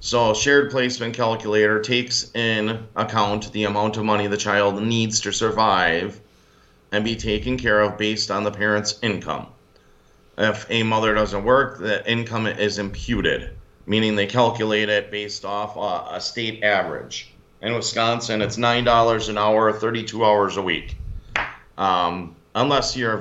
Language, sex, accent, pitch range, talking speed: English, male, American, 95-110 Hz, 145 wpm